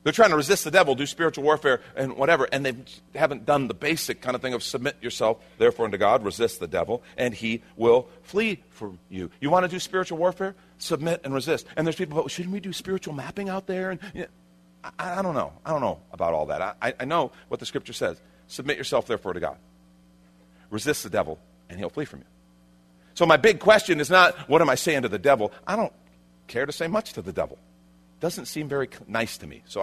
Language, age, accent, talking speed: English, 40-59, American, 235 wpm